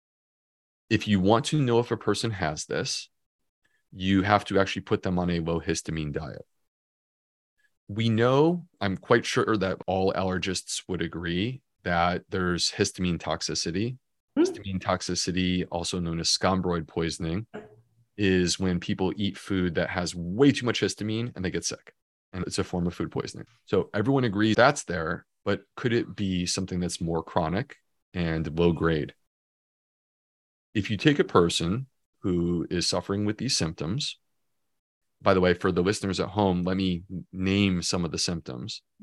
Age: 30-49